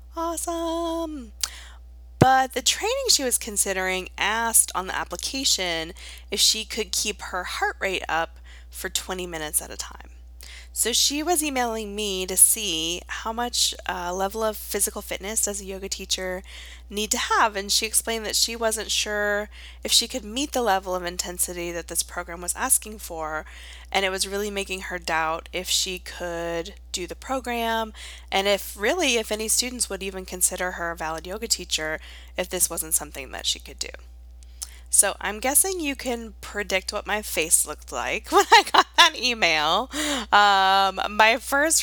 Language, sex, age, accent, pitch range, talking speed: English, female, 20-39, American, 165-230 Hz, 175 wpm